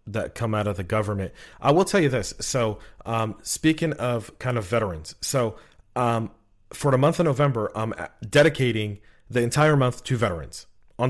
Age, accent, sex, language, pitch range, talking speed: 40-59, American, male, English, 105-135 Hz, 180 wpm